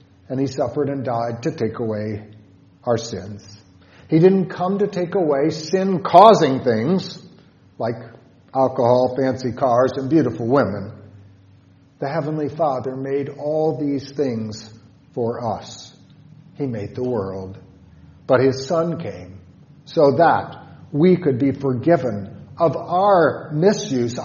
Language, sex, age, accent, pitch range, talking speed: English, male, 50-69, American, 115-160 Hz, 125 wpm